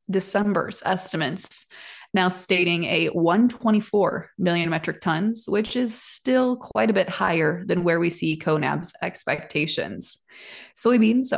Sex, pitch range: female, 170-215 Hz